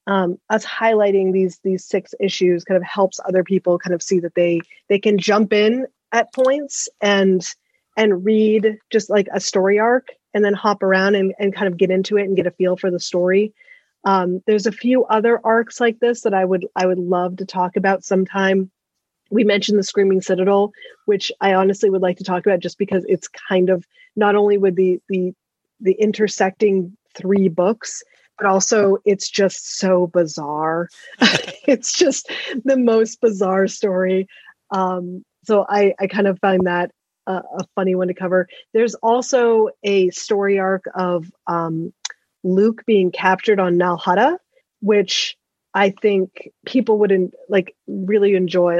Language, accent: English, American